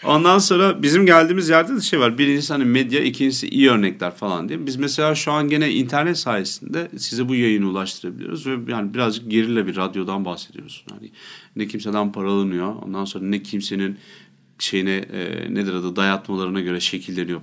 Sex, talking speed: male, 170 wpm